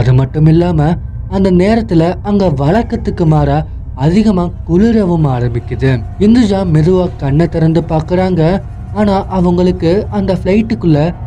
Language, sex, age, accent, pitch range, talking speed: Tamil, male, 20-39, native, 125-185 Hz, 100 wpm